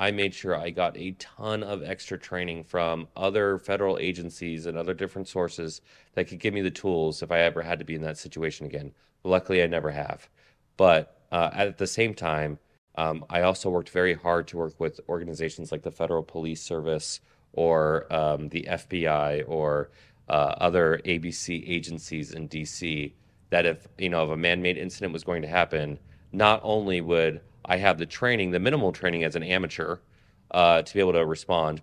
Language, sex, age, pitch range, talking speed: English, male, 30-49, 80-95 Hz, 185 wpm